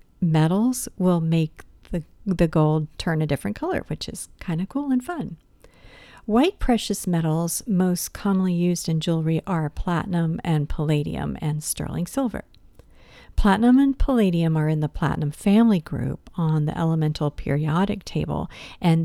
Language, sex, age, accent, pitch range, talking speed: English, female, 50-69, American, 155-195 Hz, 150 wpm